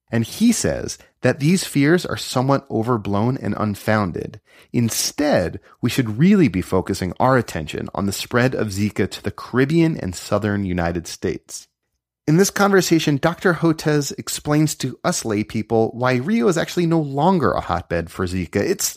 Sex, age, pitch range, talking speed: male, 30-49, 100-145 Hz, 160 wpm